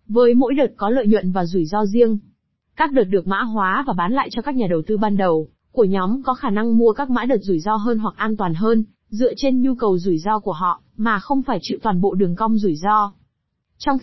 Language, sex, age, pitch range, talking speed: Vietnamese, female, 20-39, 205-255 Hz, 255 wpm